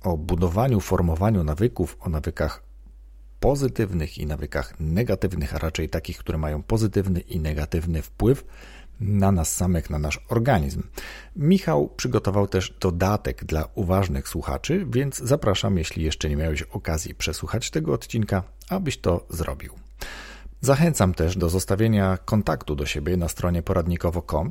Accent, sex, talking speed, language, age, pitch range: native, male, 135 wpm, Polish, 40-59, 85-110 Hz